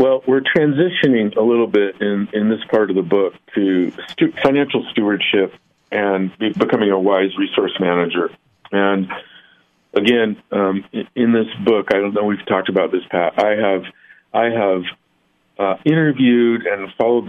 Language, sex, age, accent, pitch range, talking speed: English, male, 50-69, American, 90-115 Hz, 165 wpm